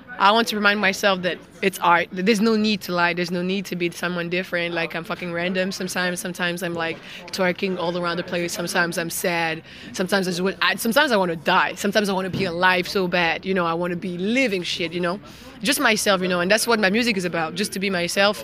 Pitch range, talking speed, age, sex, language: 180-230 Hz, 255 wpm, 20-39, female, Finnish